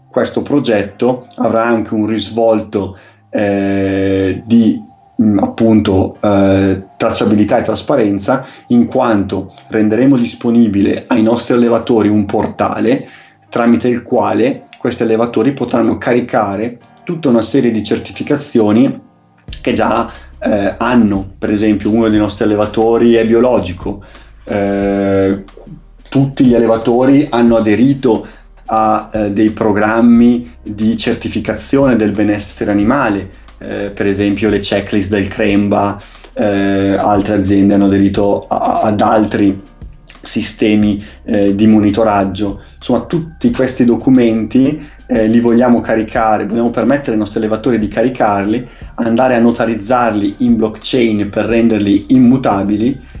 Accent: native